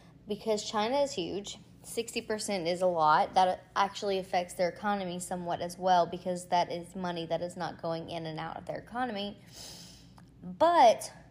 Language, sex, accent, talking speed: English, female, American, 165 wpm